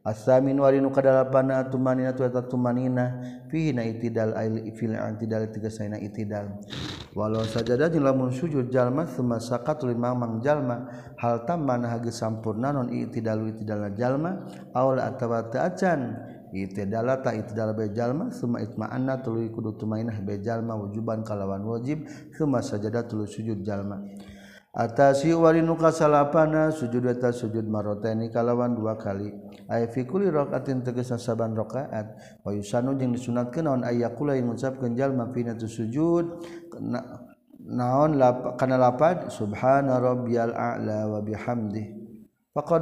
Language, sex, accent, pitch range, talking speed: Indonesian, male, native, 110-130 Hz, 120 wpm